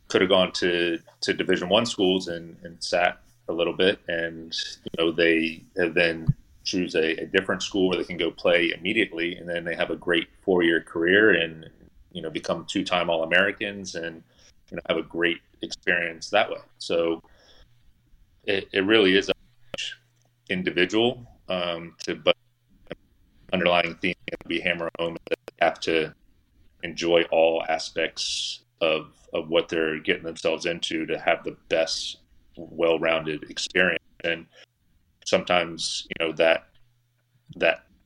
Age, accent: 30-49, American